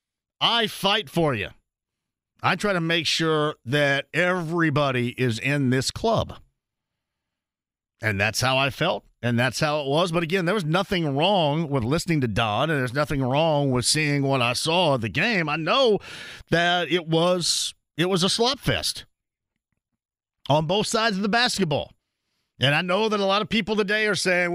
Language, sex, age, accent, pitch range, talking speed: English, male, 40-59, American, 145-200 Hz, 180 wpm